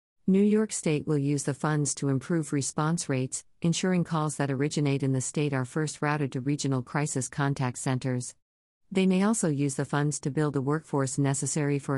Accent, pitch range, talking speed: American, 130-155 Hz, 190 wpm